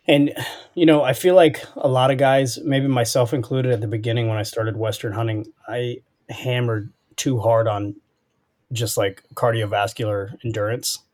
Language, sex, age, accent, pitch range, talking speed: English, male, 20-39, American, 105-120 Hz, 160 wpm